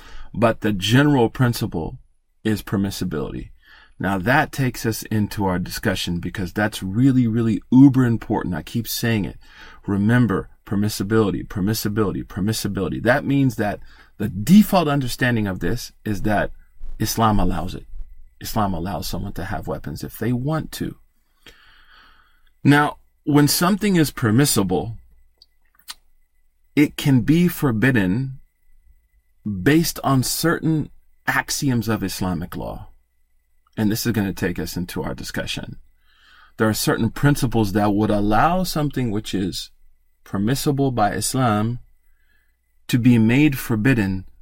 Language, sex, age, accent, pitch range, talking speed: English, male, 40-59, American, 95-125 Hz, 125 wpm